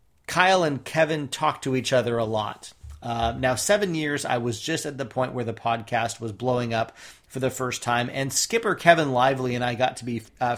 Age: 30-49